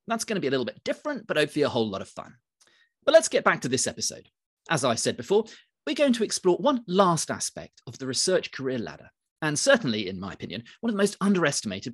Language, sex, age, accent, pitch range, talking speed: English, male, 40-59, British, 120-200 Hz, 235 wpm